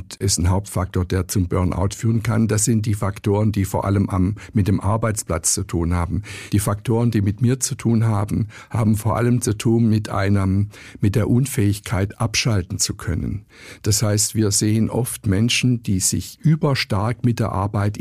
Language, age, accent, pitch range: German, 60-79, German, 100-120 Hz